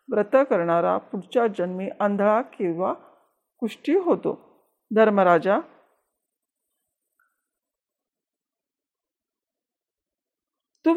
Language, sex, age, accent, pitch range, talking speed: Marathi, female, 50-69, native, 205-280 Hz, 55 wpm